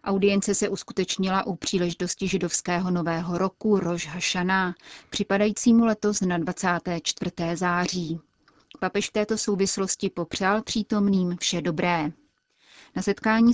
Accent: native